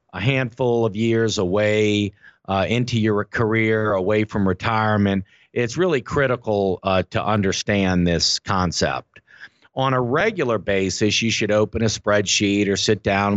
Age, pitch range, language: 50-69, 100-125 Hz, English